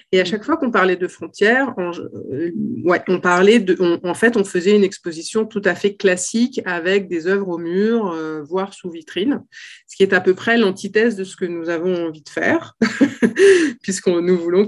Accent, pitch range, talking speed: French, 170-215 Hz, 210 wpm